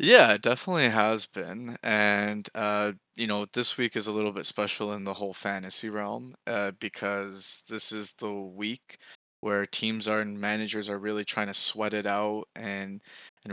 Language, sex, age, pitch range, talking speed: English, male, 20-39, 105-110 Hz, 180 wpm